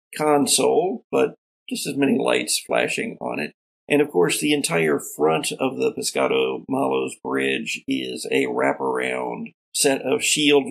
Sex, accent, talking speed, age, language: male, American, 145 wpm, 50-69, English